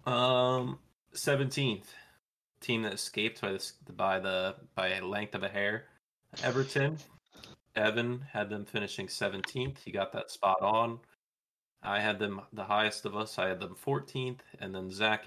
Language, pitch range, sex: English, 95-120 Hz, male